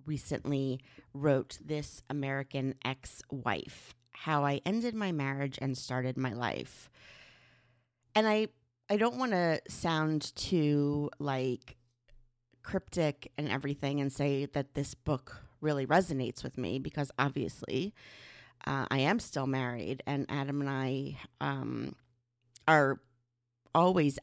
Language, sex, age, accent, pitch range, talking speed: English, female, 30-49, American, 130-150 Hz, 120 wpm